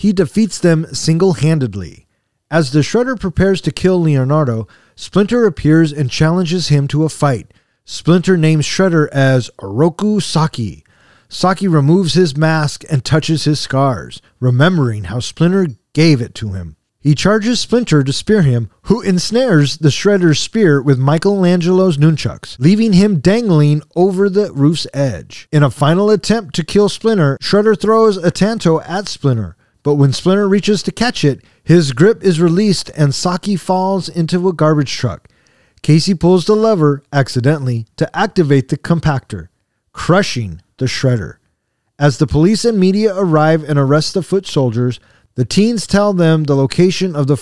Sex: male